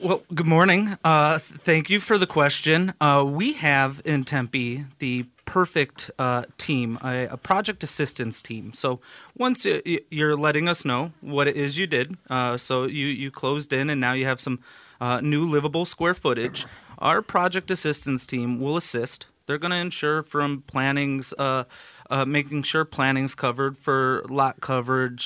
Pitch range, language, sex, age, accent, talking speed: 130-160 Hz, English, male, 30-49, American, 175 wpm